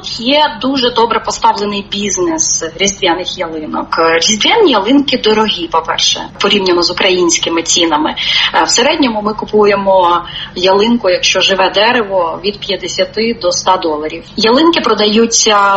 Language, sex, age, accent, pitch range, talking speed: Ukrainian, female, 30-49, native, 185-235 Hz, 115 wpm